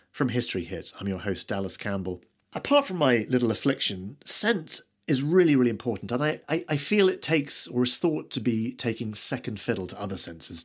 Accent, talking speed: British, 205 wpm